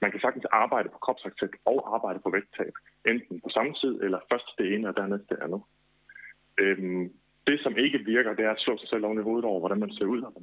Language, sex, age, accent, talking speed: Danish, male, 30-49, native, 245 wpm